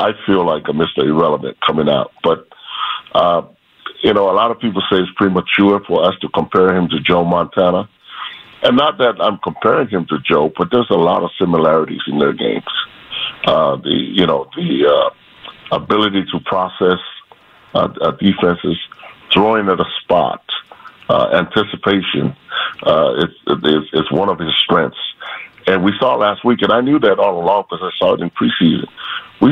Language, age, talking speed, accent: English, 50-69, 175 wpm, American